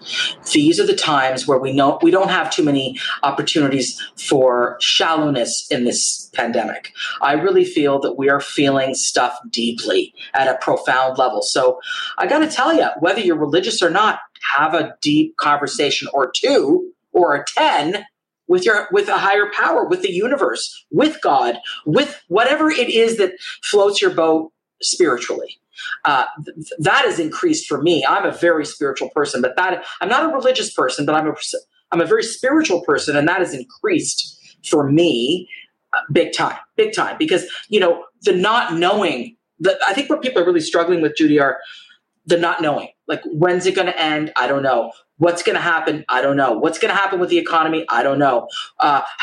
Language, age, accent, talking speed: English, 40-59, American, 190 wpm